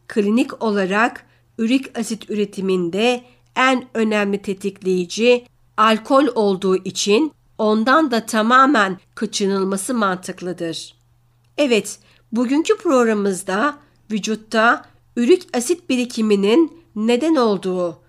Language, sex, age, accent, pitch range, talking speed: Turkish, female, 60-79, native, 190-240 Hz, 85 wpm